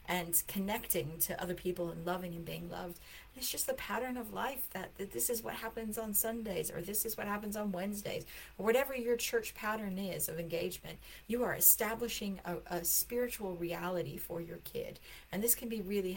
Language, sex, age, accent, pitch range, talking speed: English, female, 40-59, American, 180-245 Hz, 200 wpm